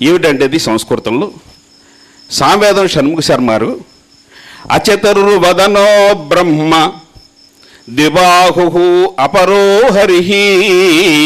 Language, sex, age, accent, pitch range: Telugu, male, 50-69, native, 135-200 Hz